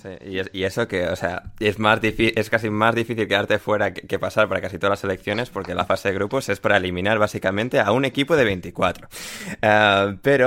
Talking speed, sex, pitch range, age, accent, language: 235 wpm, male, 100-120 Hz, 20-39, Spanish, Spanish